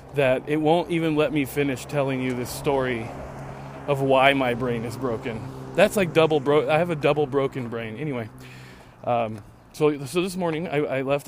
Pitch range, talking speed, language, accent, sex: 125-155 Hz, 190 wpm, English, American, male